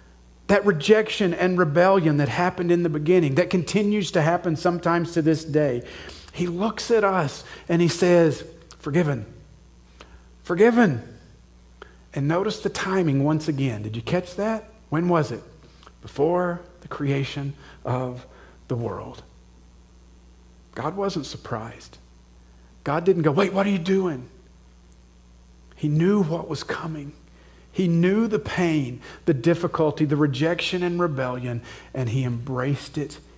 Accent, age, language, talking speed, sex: American, 50-69, English, 135 wpm, male